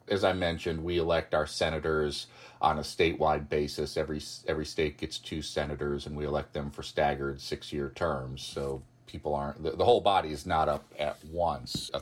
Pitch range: 75-95 Hz